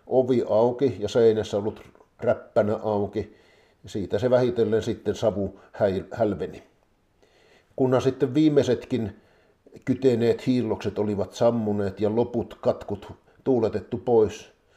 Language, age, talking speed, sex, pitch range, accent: Finnish, 50-69, 100 wpm, male, 100-125 Hz, native